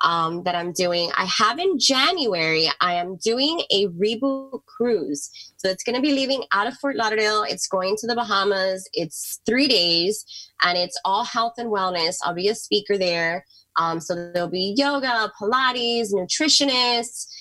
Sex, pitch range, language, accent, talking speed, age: female, 170-215 Hz, English, American, 165 wpm, 20-39